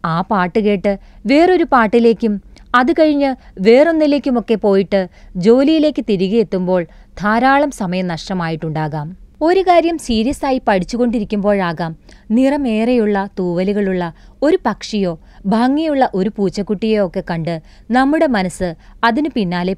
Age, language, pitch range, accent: 30-49, Malayalam, 185-270 Hz, native